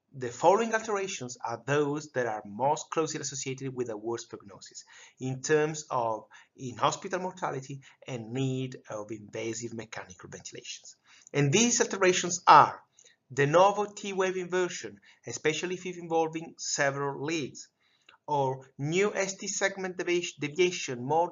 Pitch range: 130-185 Hz